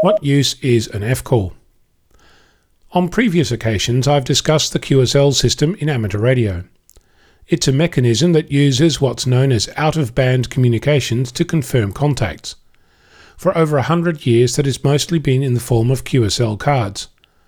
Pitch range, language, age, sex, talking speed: 120-150 Hz, English, 40-59, male, 150 wpm